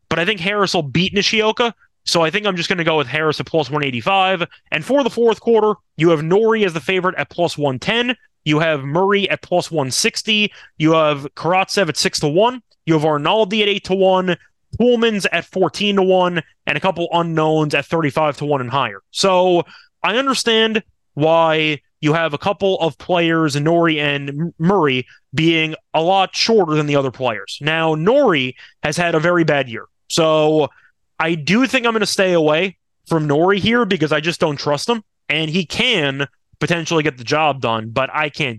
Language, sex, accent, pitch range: English, male, American, 155-195 Hz